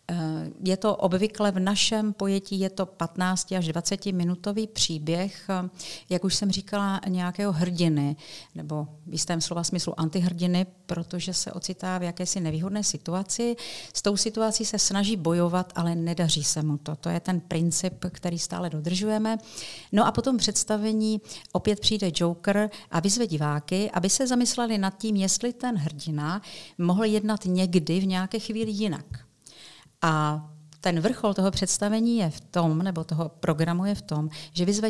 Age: 50-69